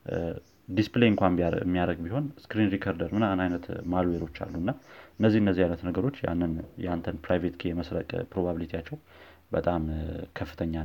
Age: 30-49